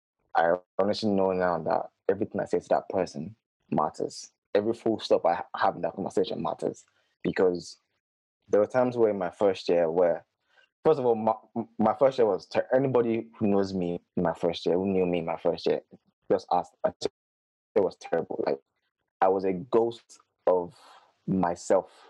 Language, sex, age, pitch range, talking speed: English, male, 20-39, 90-110 Hz, 180 wpm